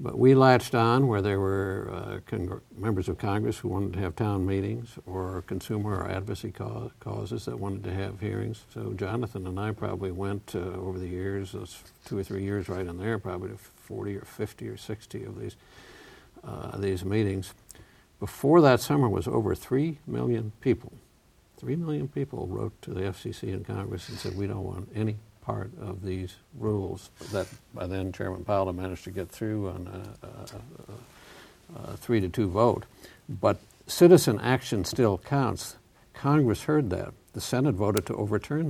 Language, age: English, 60-79